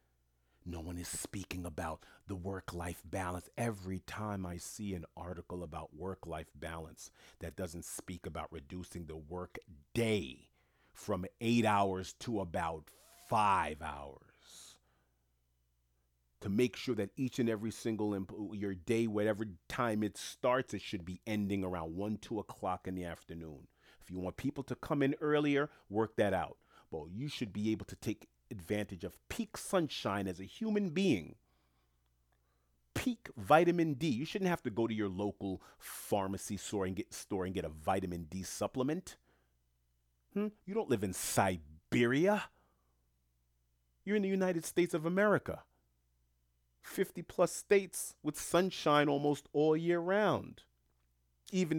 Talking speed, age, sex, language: 145 wpm, 40-59, male, English